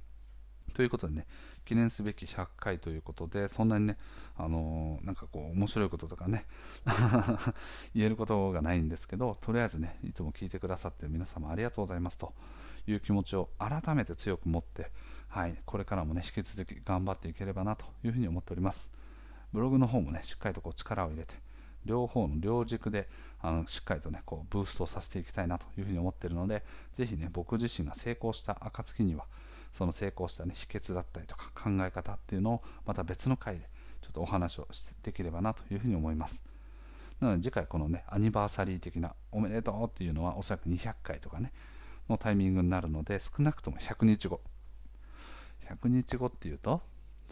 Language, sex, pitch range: Japanese, male, 85-110 Hz